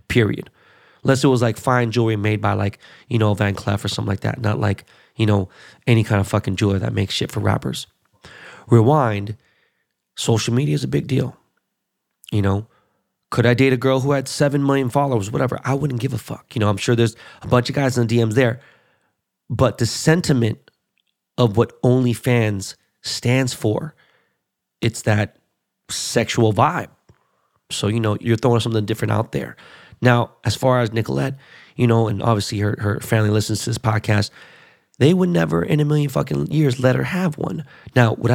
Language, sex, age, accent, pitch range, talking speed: English, male, 30-49, American, 110-140 Hz, 190 wpm